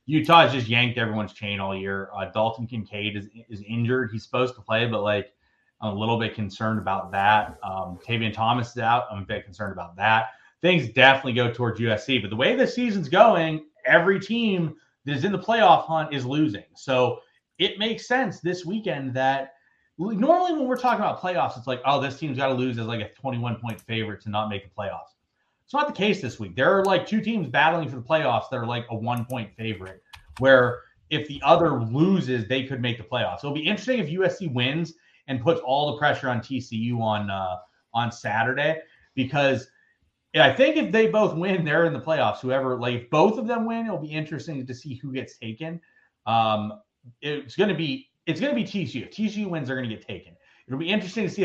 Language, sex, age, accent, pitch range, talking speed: English, male, 30-49, American, 115-165 Hz, 220 wpm